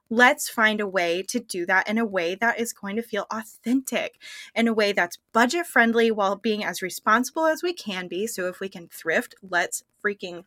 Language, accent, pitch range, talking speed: English, American, 215-285 Hz, 210 wpm